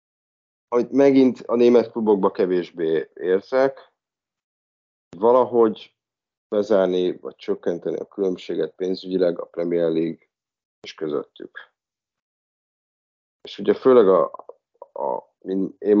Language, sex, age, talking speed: Hungarian, male, 30-49, 90 wpm